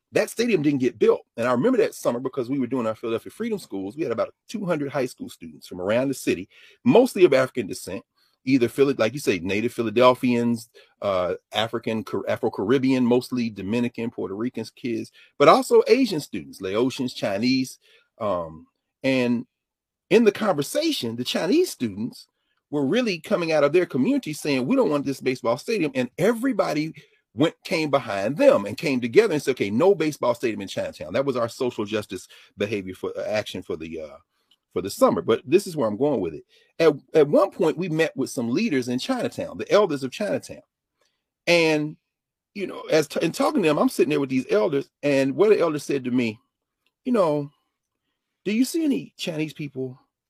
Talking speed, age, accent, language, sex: 195 wpm, 40-59, American, English, male